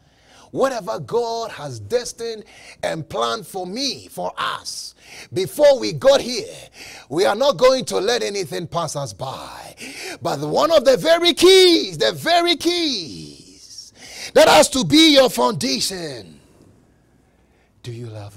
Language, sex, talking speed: English, male, 135 wpm